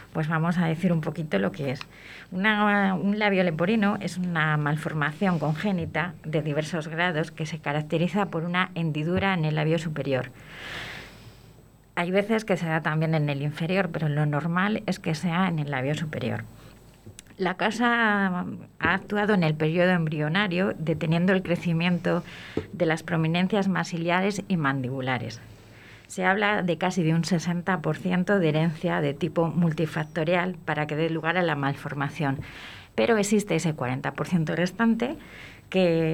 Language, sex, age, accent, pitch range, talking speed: Spanish, female, 30-49, Spanish, 150-185 Hz, 150 wpm